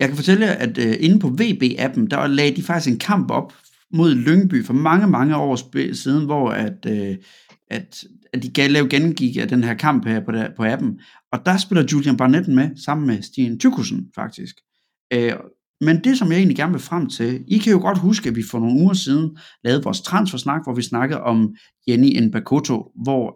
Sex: male